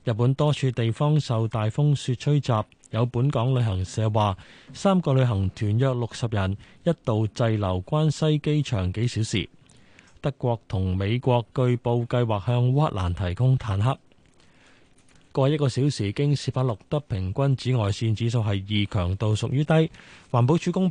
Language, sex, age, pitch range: Chinese, male, 20-39, 110-140 Hz